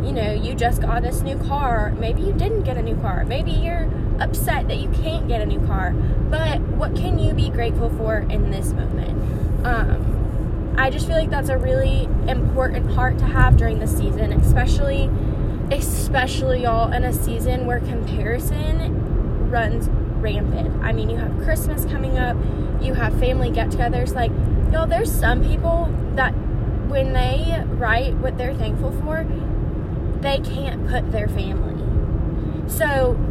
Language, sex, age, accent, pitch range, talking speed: English, female, 10-29, American, 105-115 Hz, 160 wpm